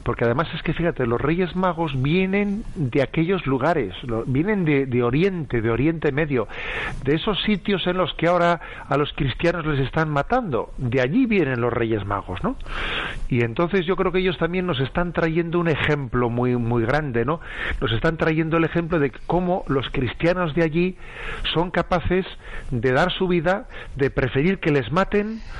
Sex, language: male, Spanish